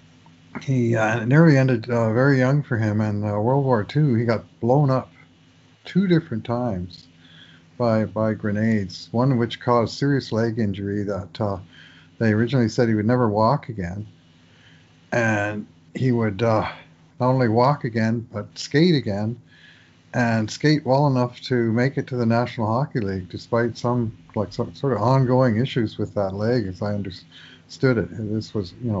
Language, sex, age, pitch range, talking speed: English, male, 50-69, 100-125 Hz, 170 wpm